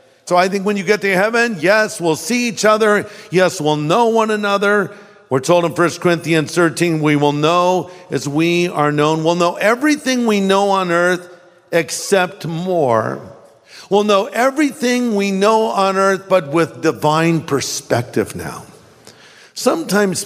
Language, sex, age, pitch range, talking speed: English, male, 50-69, 165-235 Hz, 155 wpm